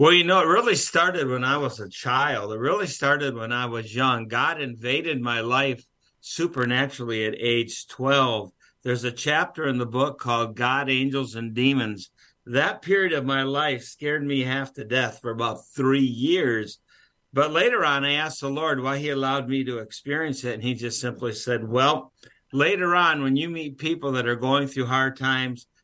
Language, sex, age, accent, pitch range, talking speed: English, male, 50-69, American, 125-155 Hz, 195 wpm